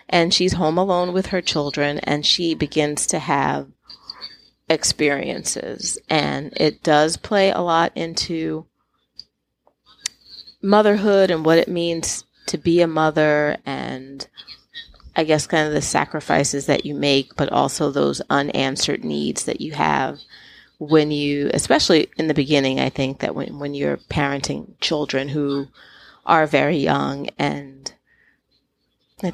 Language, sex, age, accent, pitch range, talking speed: English, female, 30-49, American, 140-180 Hz, 135 wpm